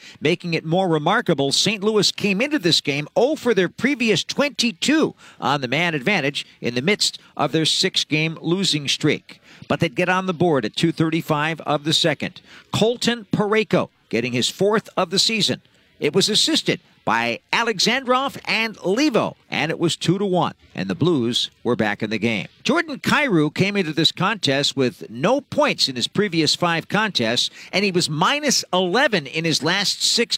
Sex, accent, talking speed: male, American, 175 wpm